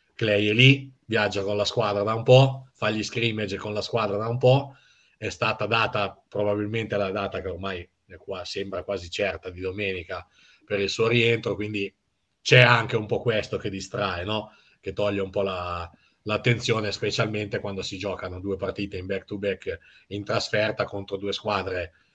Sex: male